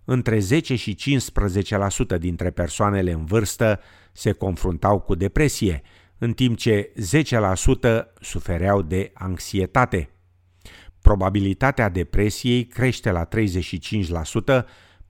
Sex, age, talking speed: male, 50-69, 95 wpm